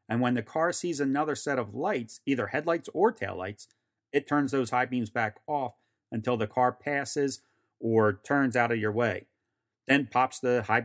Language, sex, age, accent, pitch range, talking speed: English, male, 40-59, American, 120-160 Hz, 190 wpm